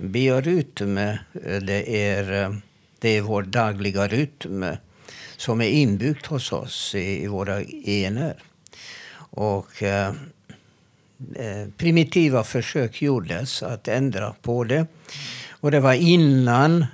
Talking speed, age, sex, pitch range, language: 105 wpm, 60-79, male, 105-140 Hz, Swedish